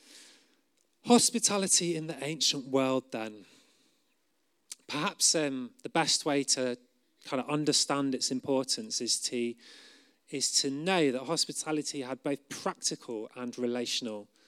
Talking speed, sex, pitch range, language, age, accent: 120 wpm, male, 125-165 Hz, English, 30-49, British